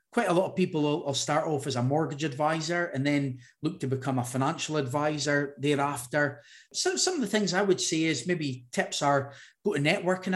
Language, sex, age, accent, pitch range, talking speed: English, male, 30-49, British, 135-175 Hz, 210 wpm